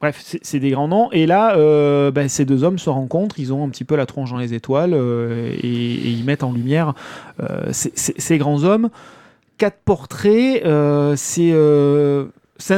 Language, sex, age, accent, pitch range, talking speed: French, male, 30-49, French, 135-175 Hz, 195 wpm